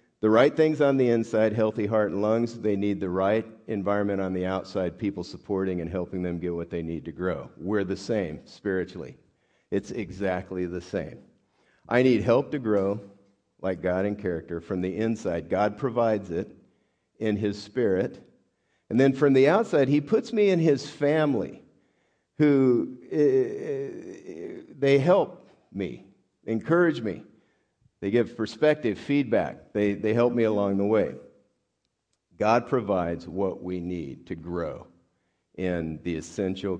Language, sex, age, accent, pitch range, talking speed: English, male, 50-69, American, 95-125 Hz, 155 wpm